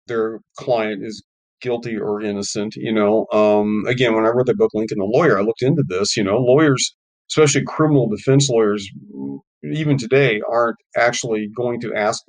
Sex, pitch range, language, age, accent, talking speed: male, 110-140 Hz, English, 40-59, American, 175 wpm